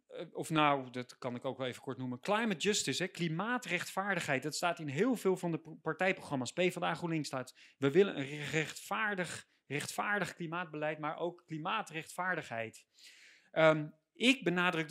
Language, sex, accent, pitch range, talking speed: Dutch, male, Dutch, 140-185 Hz, 150 wpm